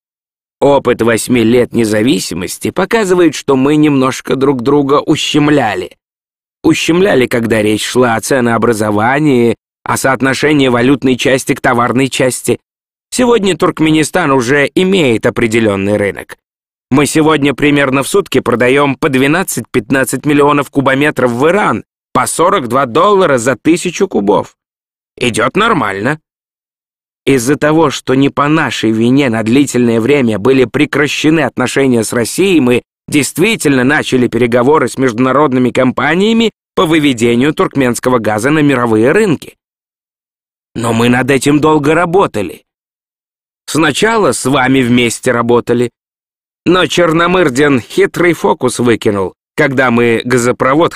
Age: 20-39